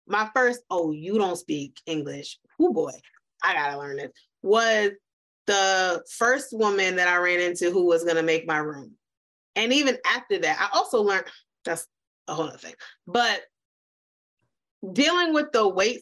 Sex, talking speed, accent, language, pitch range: female, 170 wpm, American, English, 190-255 Hz